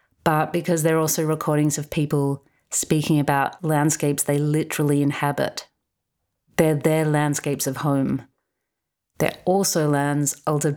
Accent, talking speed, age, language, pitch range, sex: Australian, 125 wpm, 30-49, English, 145-155 Hz, female